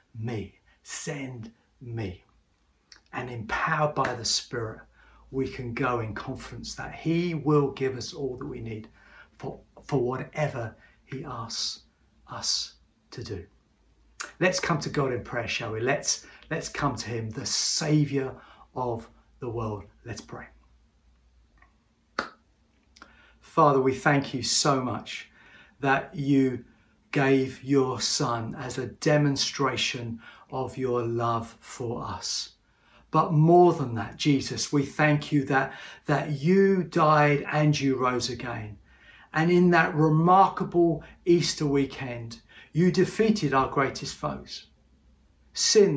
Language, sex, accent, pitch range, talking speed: English, male, British, 120-155 Hz, 125 wpm